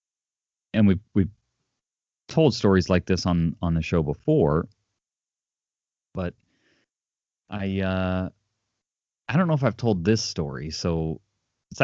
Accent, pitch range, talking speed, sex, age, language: American, 85-115 Hz, 125 wpm, male, 30-49, English